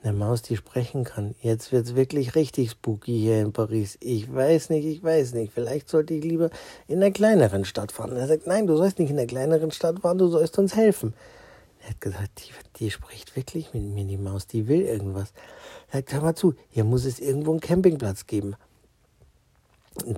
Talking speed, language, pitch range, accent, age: 210 wpm, German, 110-160 Hz, German, 60-79